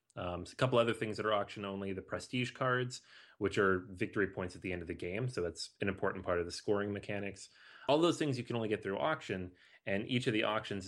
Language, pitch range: English, 95-120 Hz